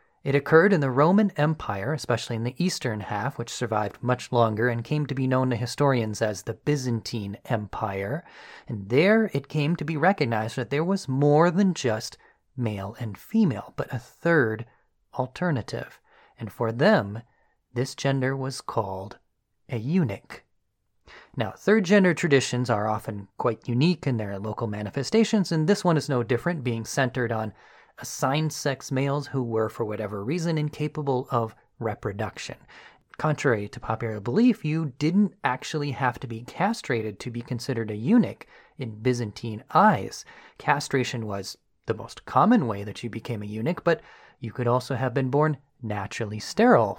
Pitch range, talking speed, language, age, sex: 115-155 Hz, 160 wpm, English, 30-49, male